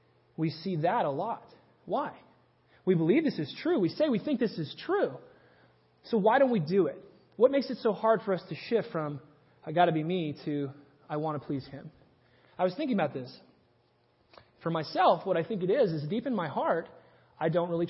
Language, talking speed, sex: English, 220 wpm, male